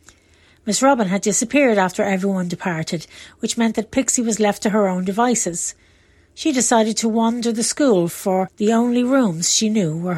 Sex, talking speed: female, 175 wpm